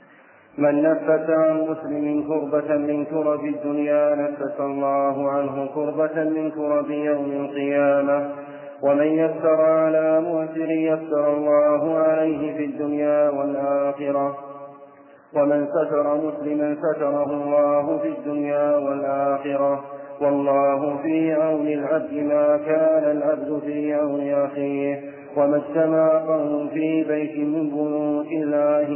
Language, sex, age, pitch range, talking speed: Arabic, male, 40-59, 140-155 Hz, 105 wpm